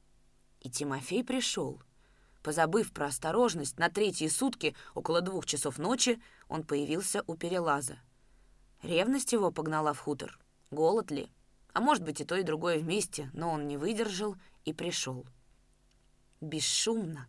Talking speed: 135 wpm